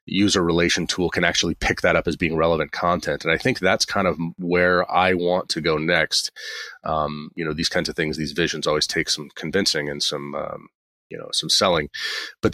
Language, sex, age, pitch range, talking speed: English, male, 30-49, 75-85 Hz, 215 wpm